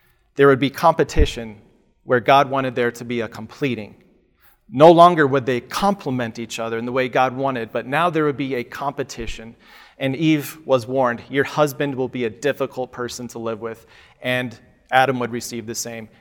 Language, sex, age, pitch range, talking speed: English, male, 40-59, 120-145 Hz, 190 wpm